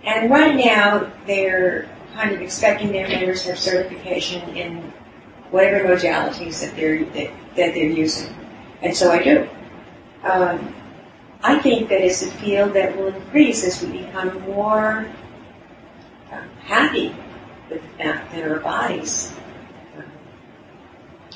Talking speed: 125 wpm